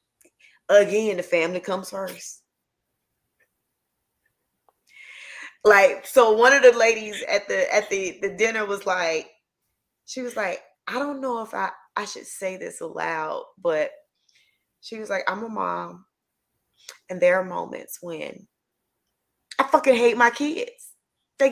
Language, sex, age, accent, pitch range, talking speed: English, female, 20-39, American, 210-300 Hz, 140 wpm